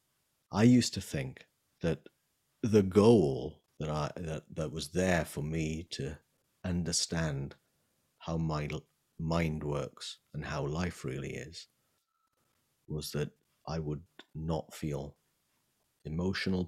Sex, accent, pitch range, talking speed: male, British, 75-100 Hz, 120 wpm